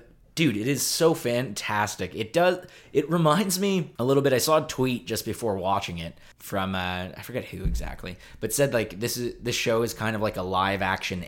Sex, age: male, 20-39